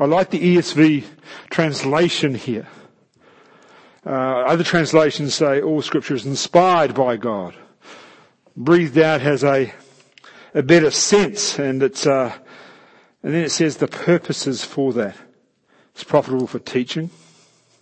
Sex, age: male, 50-69